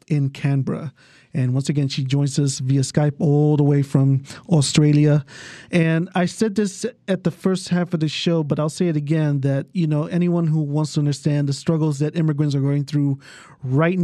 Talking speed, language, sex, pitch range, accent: 200 wpm, English, male, 140-170 Hz, American